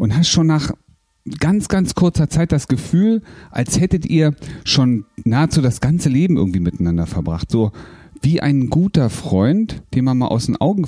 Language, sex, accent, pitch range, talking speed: German, male, German, 105-145 Hz, 175 wpm